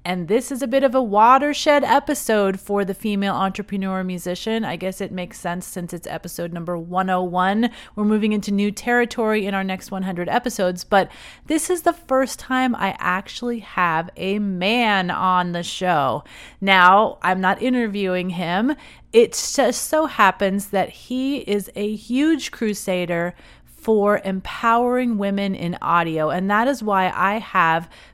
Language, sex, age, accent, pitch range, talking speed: English, female, 30-49, American, 180-230 Hz, 160 wpm